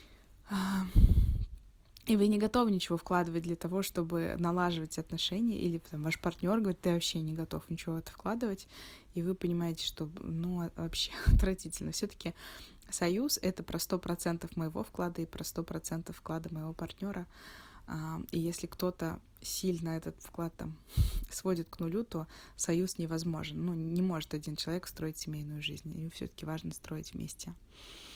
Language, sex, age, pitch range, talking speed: Russian, female, 20-39, 160-185 Hz, 150 wpm